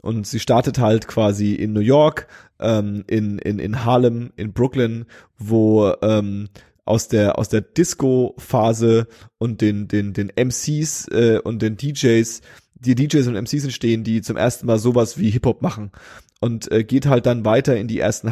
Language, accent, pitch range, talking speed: German, German, 105-120 Hz, 175 wpm